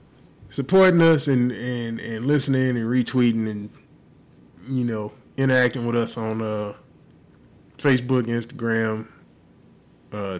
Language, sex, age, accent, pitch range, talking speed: English, male, 20-39, American, 110-125 Hz, 110 wpm